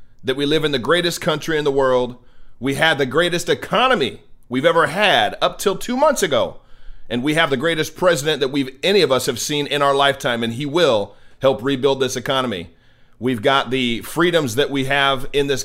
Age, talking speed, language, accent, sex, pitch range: 40-59, 210 wpm, English, American, male, 115-140 Hz